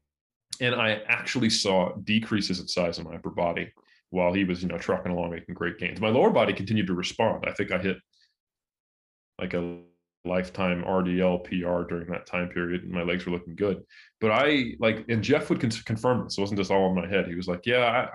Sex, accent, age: male, American, 20-39